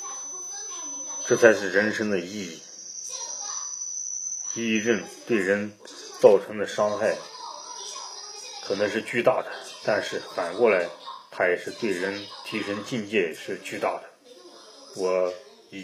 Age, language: 30-49, Chinese